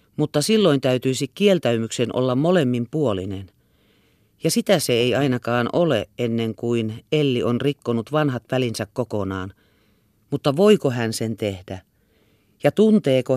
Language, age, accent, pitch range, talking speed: Finnish, 40-59, native, 110-160 Hz, 125 wpm